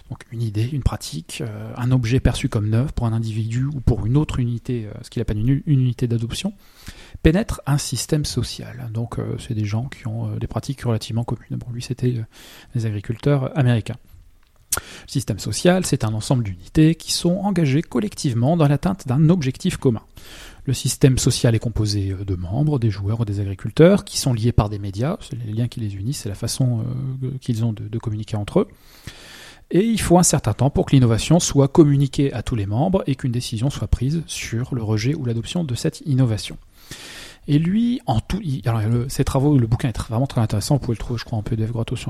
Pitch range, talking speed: 110-140 Hz, 225 wpm